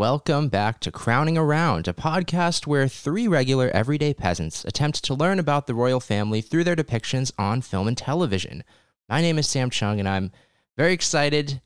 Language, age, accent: English, 20-39, American